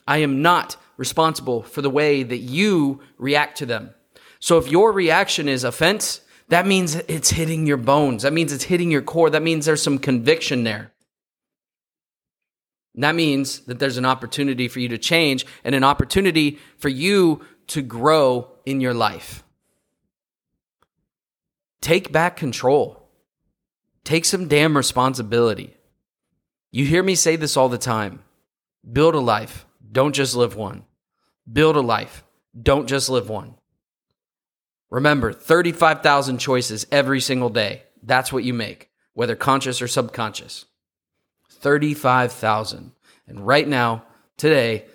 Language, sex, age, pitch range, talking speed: English, male, 30-49, 120-150 Hz, 140 wpm